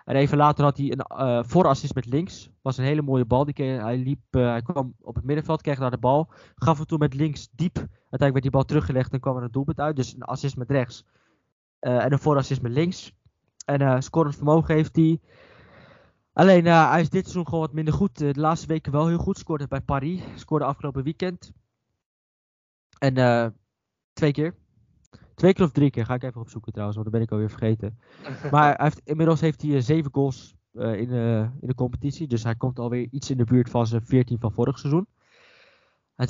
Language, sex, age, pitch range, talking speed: Dutch, male, 20-39, 125-155 Hz, 220 wpm